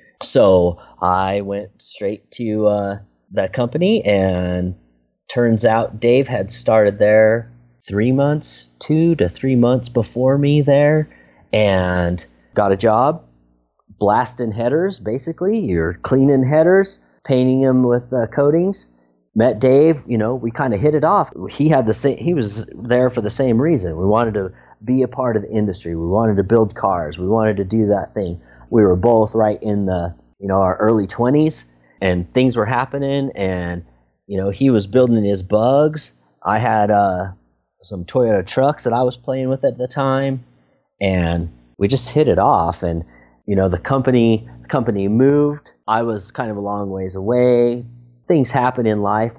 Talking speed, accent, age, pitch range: 175 wpm, American, 30-49, 95-130 Hz